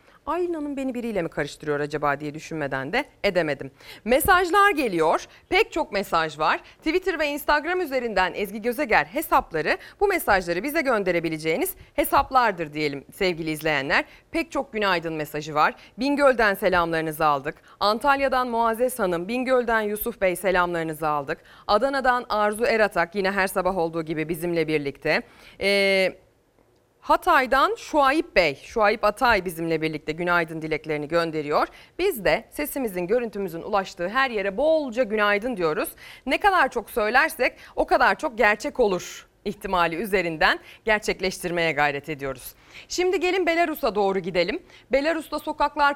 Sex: female